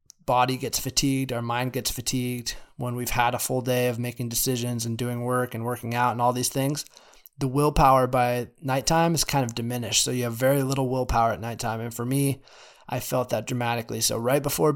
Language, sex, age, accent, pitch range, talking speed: English, male, 20-39, American, 120-140 Hz, 210 wpm